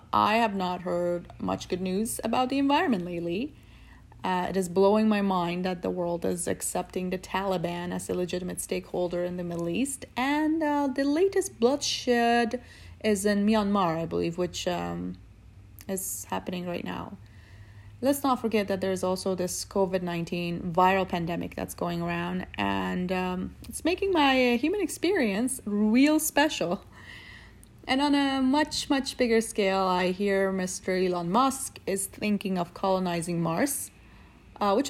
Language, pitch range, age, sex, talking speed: English, 175-245 Hz, 30-49, female, 155 wpm